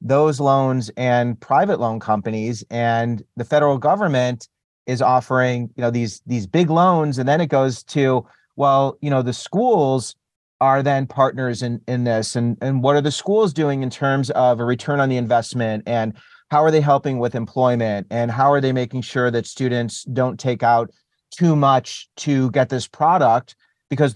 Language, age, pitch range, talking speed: English, 40-59, 125-150 Hz, 185 wpm